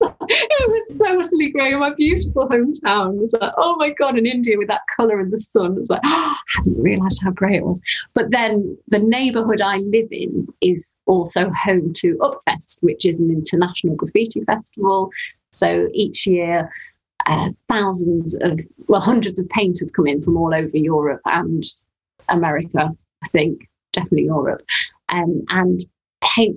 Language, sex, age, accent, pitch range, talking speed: English, female, 30-49, British, 175-225 Hz, 170 wpm